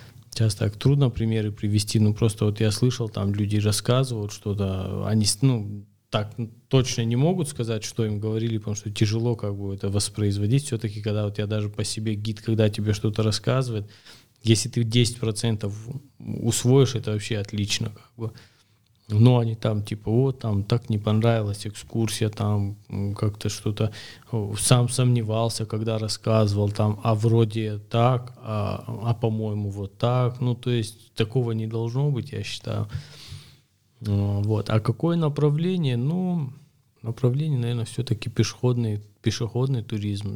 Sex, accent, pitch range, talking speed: male, native, 105-120 Hz, 145 wpm